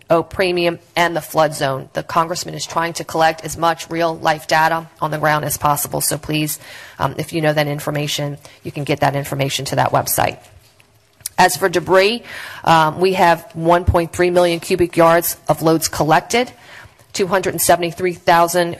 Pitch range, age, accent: 150-180 Hz, 40-59, American